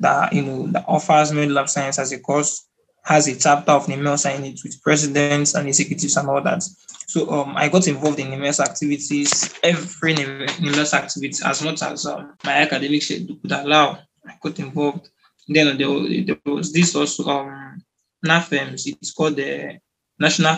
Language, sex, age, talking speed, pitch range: English, male, 20-39, 170 wpm, 145-160 Hz